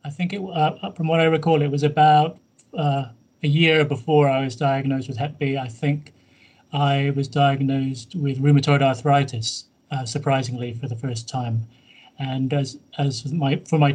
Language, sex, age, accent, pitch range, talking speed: English, male, 30-49, British, 130-150 Hz, 175 wpm